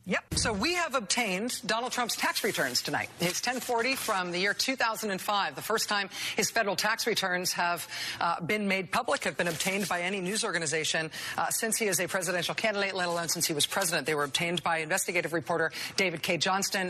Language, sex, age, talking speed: English, female, 50-69, 200 wpm